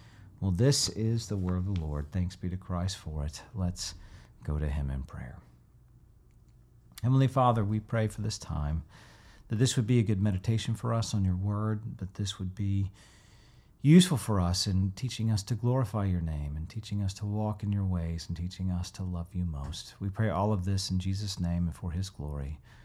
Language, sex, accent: English, male, American